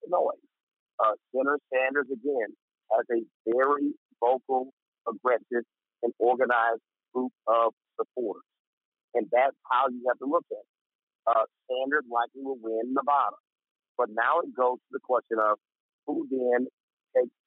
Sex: male